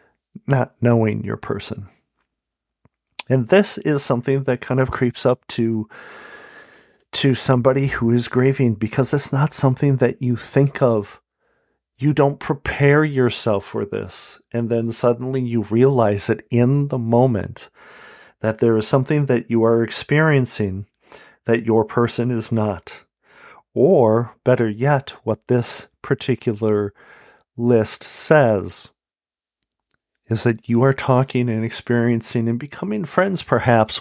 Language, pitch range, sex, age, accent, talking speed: English, 105-130 Hz, male, 40-59, American, 130 wpm